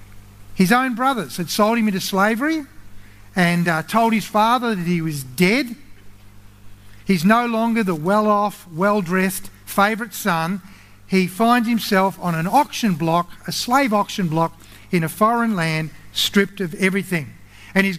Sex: male